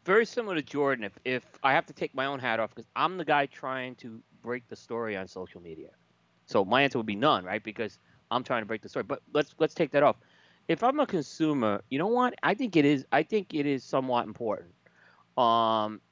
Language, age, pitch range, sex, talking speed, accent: English, 30-49, 115-150 Hz, male, 240 wpm, American